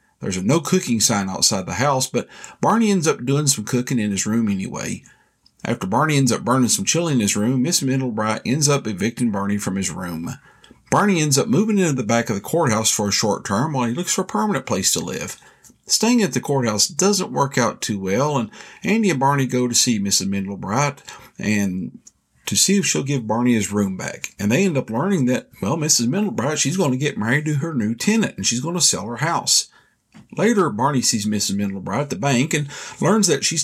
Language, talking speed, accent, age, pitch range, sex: English, 225 wpm, American, 50-69, 115-165 Hz, male